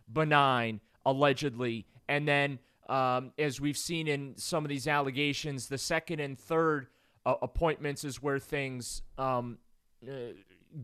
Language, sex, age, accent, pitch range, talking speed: English, male, 30-49, American, 125-175 Hz, 135 wpm